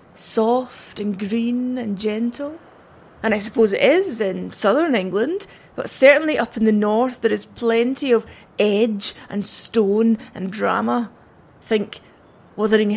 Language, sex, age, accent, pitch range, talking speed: English, female, 30-49, British, 210-270 Hz, 140 wpm